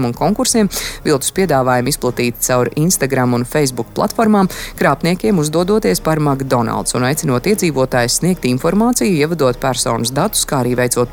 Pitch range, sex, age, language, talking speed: 125-170 Hz, female, 30-49, English, 140 wpm